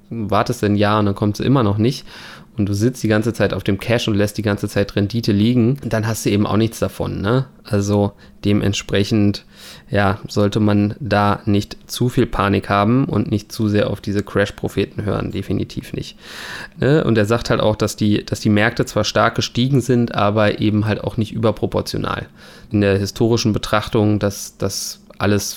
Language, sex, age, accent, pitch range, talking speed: German, male, 20-39, German, 100-115 Hz, 195 wpm